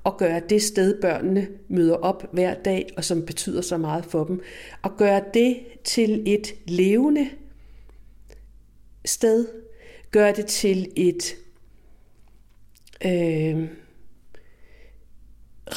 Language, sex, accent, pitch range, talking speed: Danish, female, native, 180-250 Hz, 105 wpm